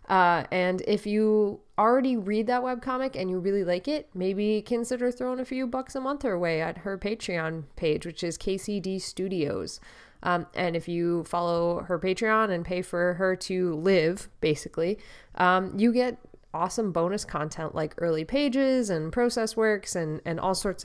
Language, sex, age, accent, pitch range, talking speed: English, female, 20-39, American, 170-215 Hz, 175 wpm